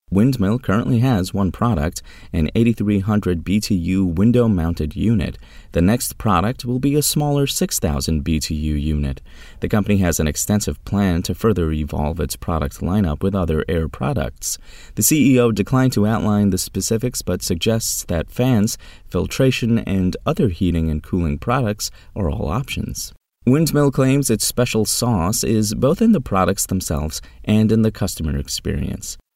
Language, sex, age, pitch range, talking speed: English, male, 30-49, 80-115 Hz, 150 wpm